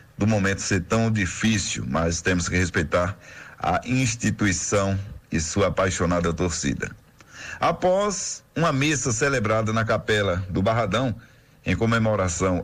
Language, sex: Portuguese, male